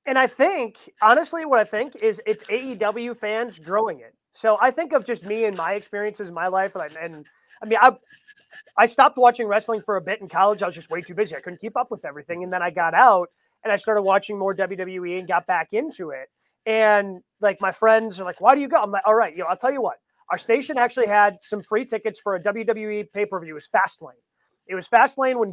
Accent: American